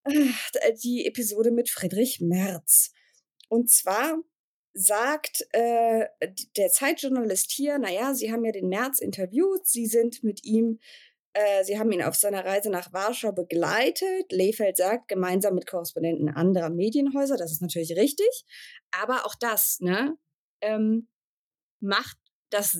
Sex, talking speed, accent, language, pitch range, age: female, 135 wpm, German, German, 190-280 Hz, 20-39